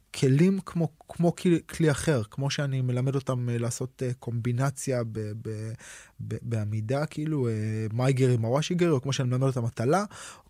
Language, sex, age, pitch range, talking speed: Hebrew, male, 20-39, 110-135 Hz, 155 wpm